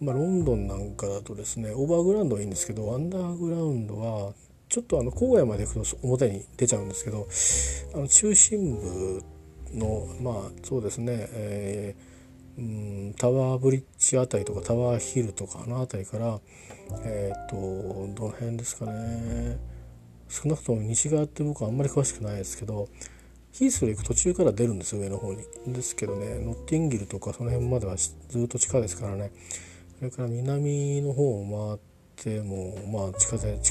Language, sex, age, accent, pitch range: Japanese, male, 40-59, native, 95-125 Hz